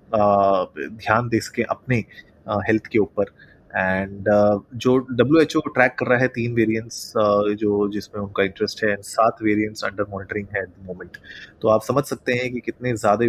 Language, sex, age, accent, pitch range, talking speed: Hindi, male, 20-39, native, 105-120 Hz, 195 wpm